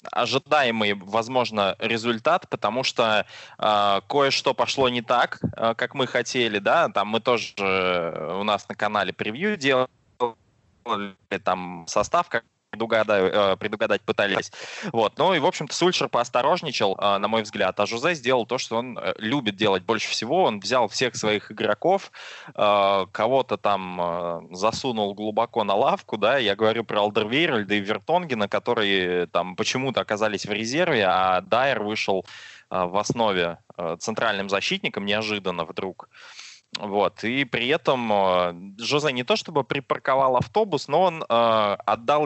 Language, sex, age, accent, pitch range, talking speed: Russian, male, 20-39, native, 100-130 Hz, 140 wpm